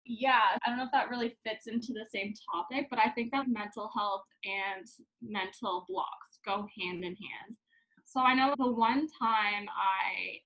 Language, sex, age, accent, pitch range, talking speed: English, female, 20-39, American, 210-270 Hz, 185 wpm